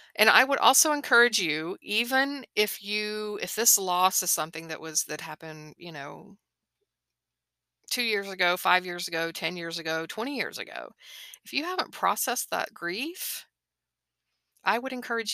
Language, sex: English, female